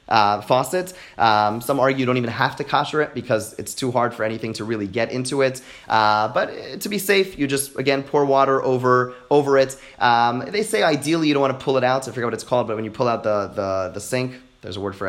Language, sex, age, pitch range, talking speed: English, male, 30-49, 115-150 Hz, 260 wpm